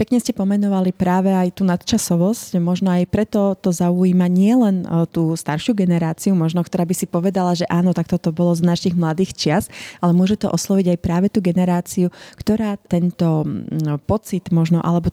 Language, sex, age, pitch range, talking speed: Slovak, female, 30-49, 165-190 Hz, 175 wpm